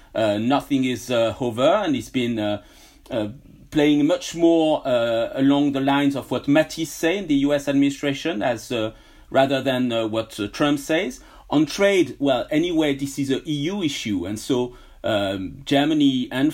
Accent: French